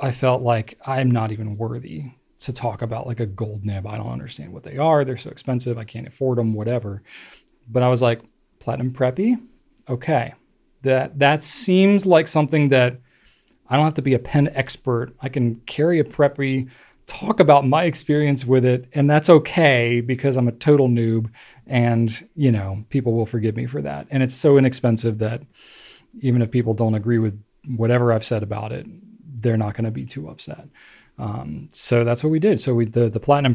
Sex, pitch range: male, 115-140 Hz